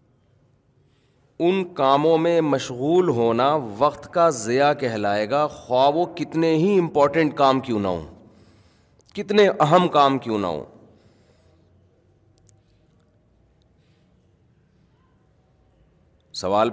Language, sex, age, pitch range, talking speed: Urdu, male, 30-49, 115-140 Hz, 95 wpm